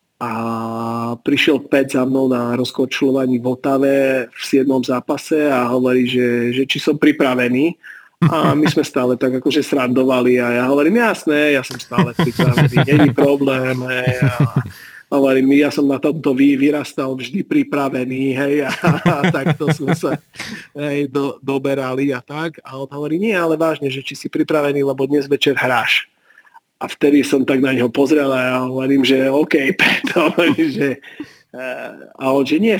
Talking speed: 160 wpm